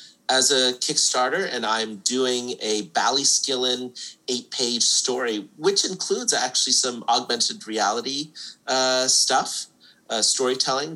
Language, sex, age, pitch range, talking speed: English, male, 30-49, 100-130 Hz, 110 wpm